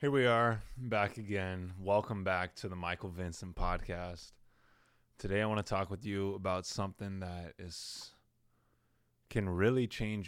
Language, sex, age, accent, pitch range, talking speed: English, male, 20-39, American, 95-115 Hz, 150 wpm